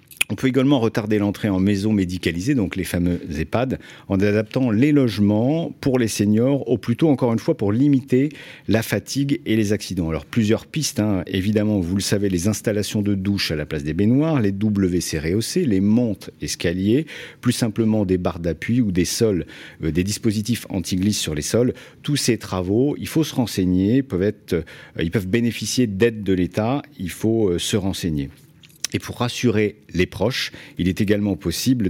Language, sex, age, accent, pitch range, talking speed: French, male, 50-69, French, 95-130 Hz, 185 wpm